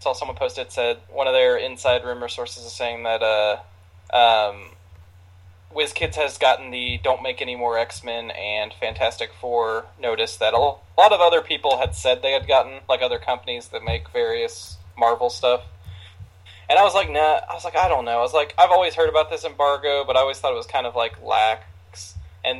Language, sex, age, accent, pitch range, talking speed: English, male, 20-39, American, 90-140 Hz, 210 wpm